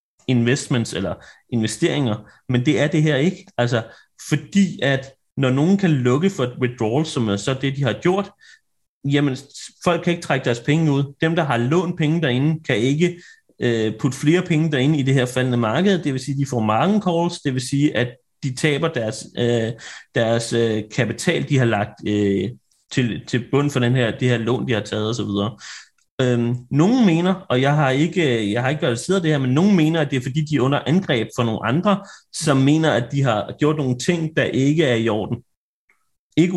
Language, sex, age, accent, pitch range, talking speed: Danish, male, 30-49, native, 120-155 Hz, 210 wpm